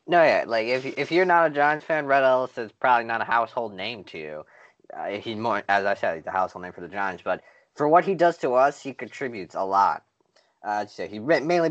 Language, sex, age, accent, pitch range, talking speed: English, male, 20-39, American, 95-130 Hz, 245 wpm